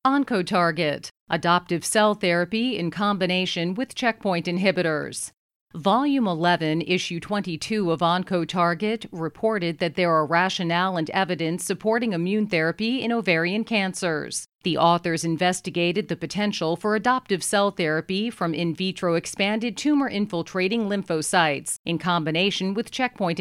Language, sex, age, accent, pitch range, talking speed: English, female, 40-59, American, 170-205 Hz, 120 wpm